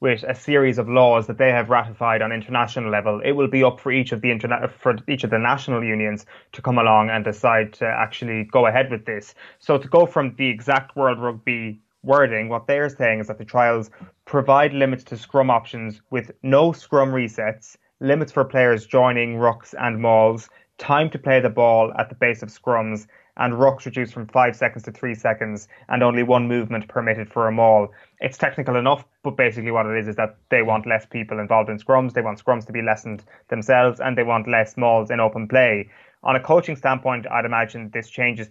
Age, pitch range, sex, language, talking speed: 20-39, 110-130 Hz, male, English, 215 wpm